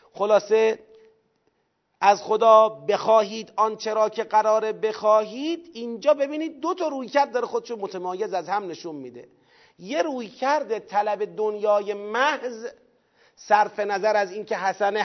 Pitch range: 175-225 Hz